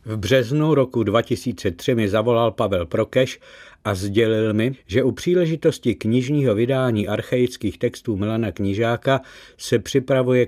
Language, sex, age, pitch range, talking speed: Czech, male, 60-79, 105-130 Hz, 125 wpm